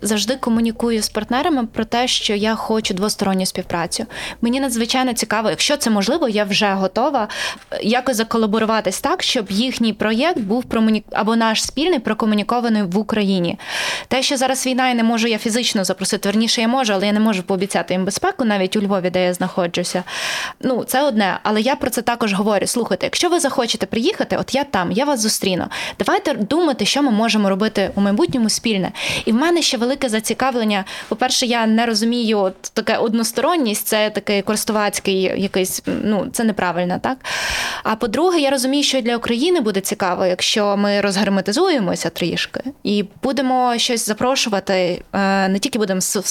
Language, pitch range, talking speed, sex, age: Ukrainian, 200-245 Hz, 170 wpm, female, 20-39